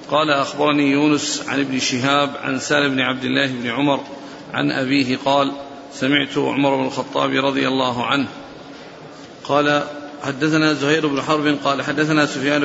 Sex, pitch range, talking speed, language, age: male, 140-150 Hz, 145 wpm, Arabic, 40-59